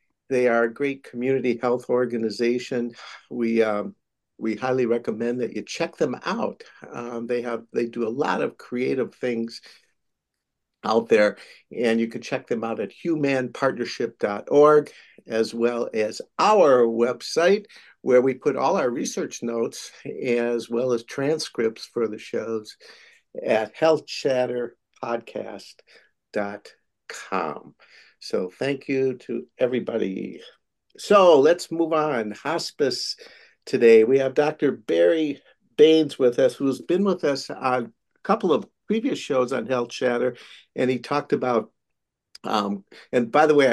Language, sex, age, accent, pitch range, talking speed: English, male, 60-79, American, 115-140 Hz, 135 wpm